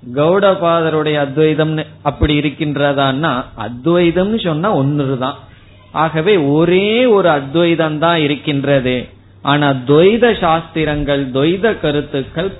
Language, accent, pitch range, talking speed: Tamil, native, 130-170 Hz, 80 wpm